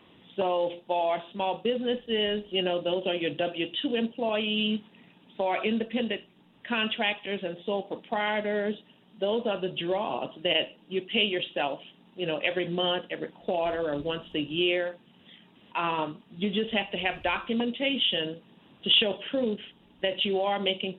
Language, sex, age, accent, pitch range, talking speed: English, female, 50-69, American, 180-215 Hz, 140 wpm